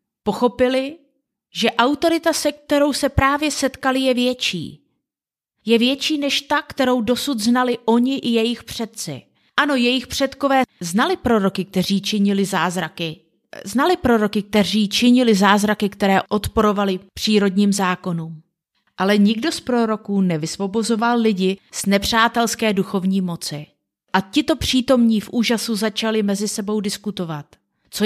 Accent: native